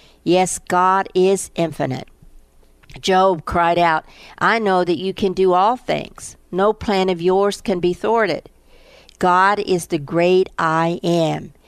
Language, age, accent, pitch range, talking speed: English, 50-69, American, 170-195 Hz, 145 wpm